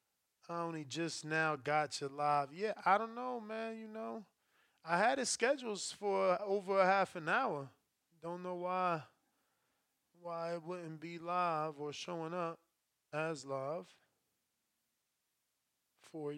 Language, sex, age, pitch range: English, male, 20-39, 155-190 Hz